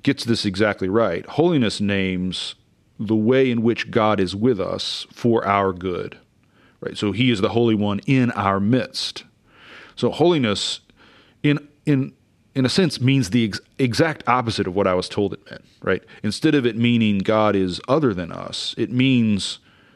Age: 40-59